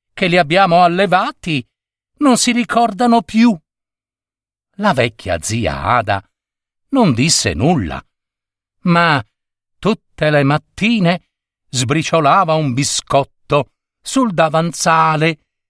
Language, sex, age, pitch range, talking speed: Italian, male, 50-69, 115-185 Hz, 90 wpm